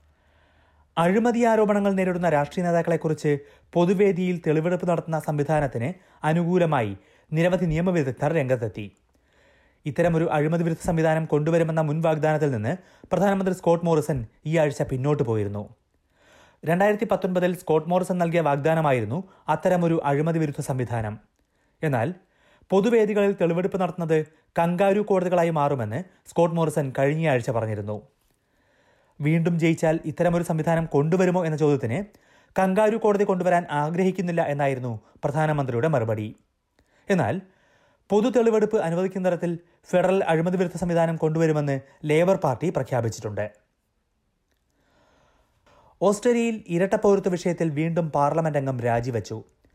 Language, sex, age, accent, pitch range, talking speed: Malayalam, male, 30-49, native, 140-180 Hz, 100 wpm